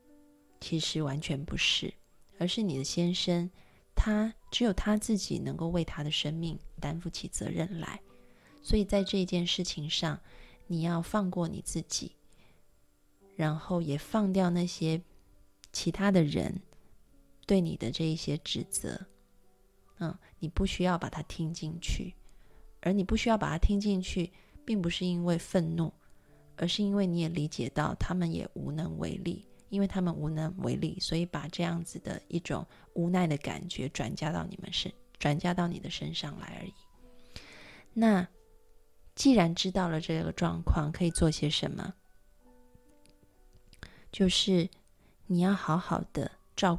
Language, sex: Chinese, female